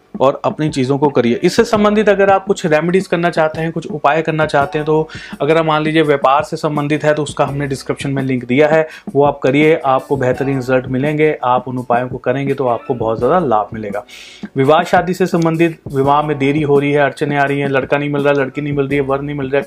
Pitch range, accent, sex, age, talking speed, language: 135-160 Hz, native, male, 30-49, 245 wpm, Hindi